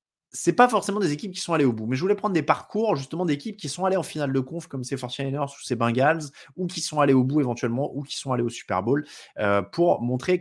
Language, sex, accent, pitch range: French, male, French, 120-170 Hz